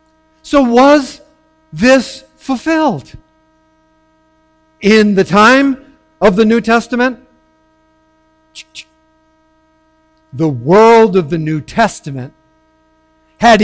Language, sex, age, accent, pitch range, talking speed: English, male, 50-69, American, 160-225 Hz, 80 wpm